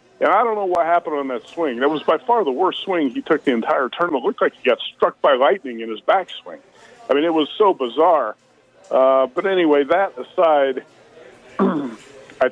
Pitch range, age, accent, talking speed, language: 125-160 Hz, 50-69, American, 205 wpm, English